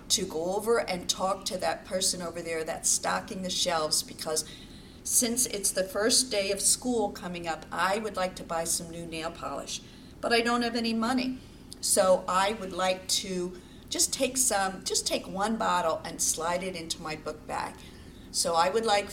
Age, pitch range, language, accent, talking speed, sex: 50-69, 170-225 Hz, English, American, 195 wpm, female